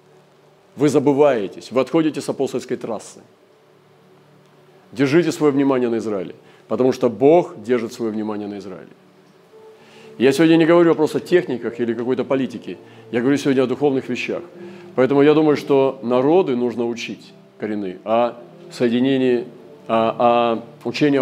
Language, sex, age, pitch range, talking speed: Russian, male, 40-59, 115-150 Hz, 140 wpm